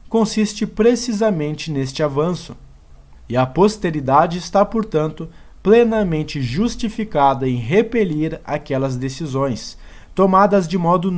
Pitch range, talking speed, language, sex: 130-190 Hz, 95 wpm, Portuguese, male